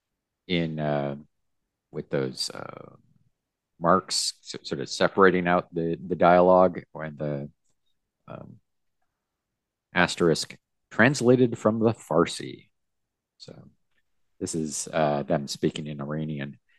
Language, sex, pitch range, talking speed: English, male, 75-105 Hz, 105 wpm